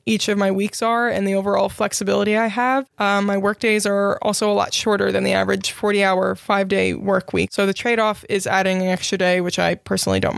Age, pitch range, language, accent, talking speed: 20-39, 195-220 Hz, English, American, 245 wpm